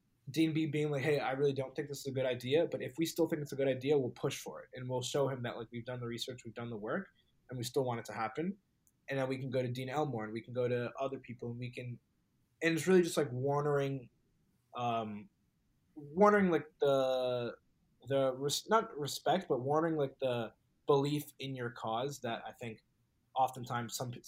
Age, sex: 20-39, male